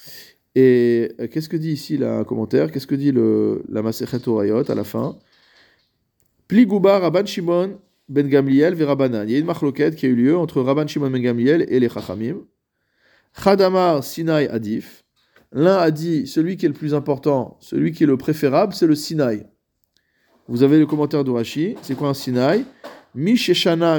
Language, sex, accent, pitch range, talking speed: French, male, French, 130-170 Hz, 165 wpm